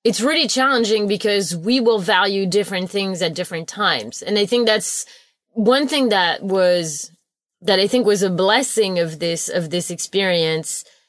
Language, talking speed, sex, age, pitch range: English, 170 wpm, female, 30-49, 175-215 Hz